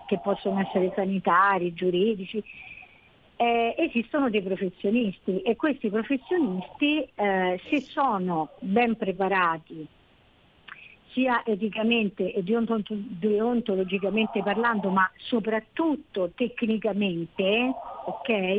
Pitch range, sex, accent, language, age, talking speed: 195-245 Hz, female, native, Italian, 50-69, 80 wpm